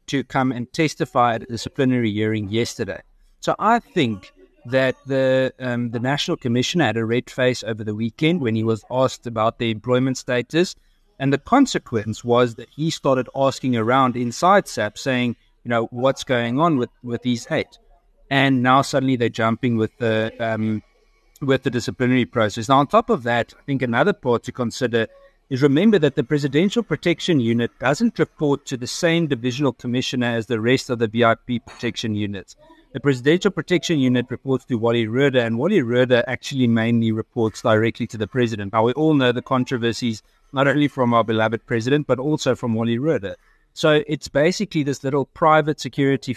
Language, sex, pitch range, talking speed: English, male, 115-140 Hz, 180 wpm